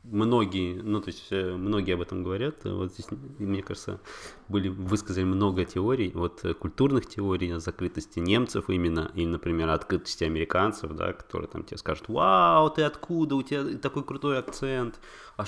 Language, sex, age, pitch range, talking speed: Russian, male, 20-39, 90-110 Hz, 160 wpm